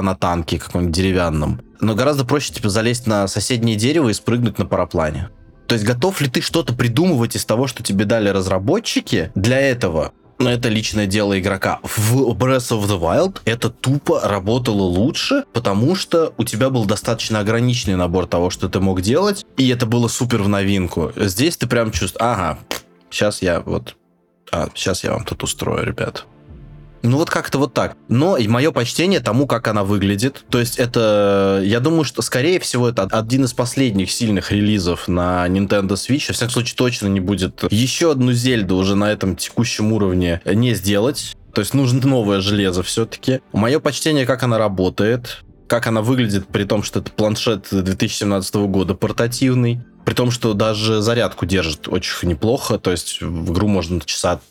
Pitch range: 95-125 Hz